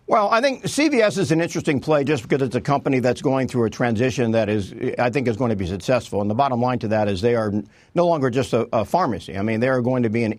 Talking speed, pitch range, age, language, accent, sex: 290 wpm, 125-155 Hz, 50-69, English, American, male